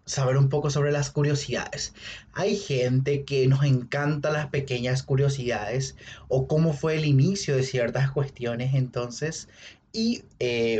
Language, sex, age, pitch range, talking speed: Spanish, male, 30-49, 125-150 Hz, 140 wpm